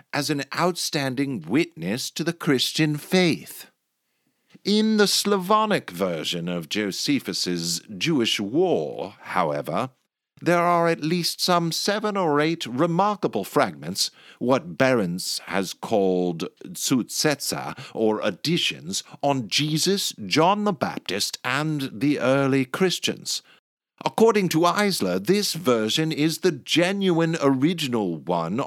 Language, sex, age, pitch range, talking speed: English, male, 50-69, 135-195 Hz, 110 wpm